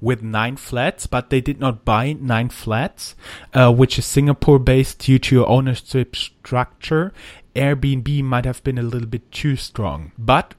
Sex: male